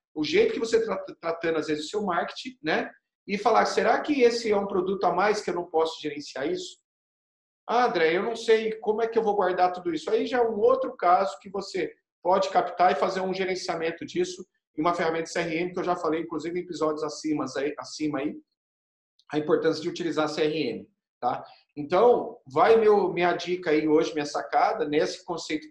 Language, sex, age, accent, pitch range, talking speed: Portuguese, male, 40-59, Brazilian, 160-235 Hz, 205 wpm